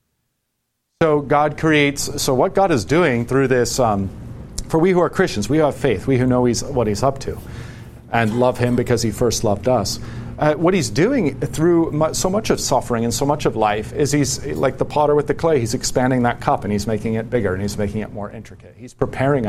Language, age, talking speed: English, 40-59, 250 wpm